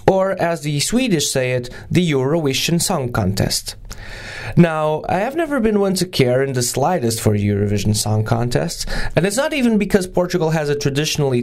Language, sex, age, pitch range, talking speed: English, male, 20-39, 115-170 Hz, 180 wpm